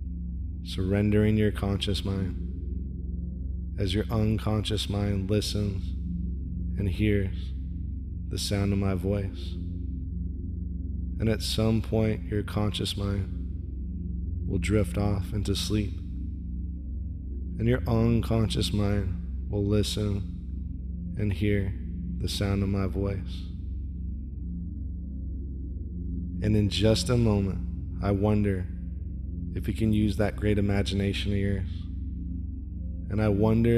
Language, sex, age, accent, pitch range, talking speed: English, male, 20-39, American, 85-105 Hz, 105 wpm